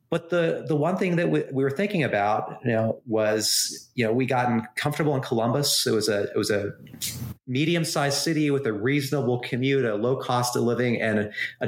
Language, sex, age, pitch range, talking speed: English, male, 30-49, 110-140 Hz, 210 wpm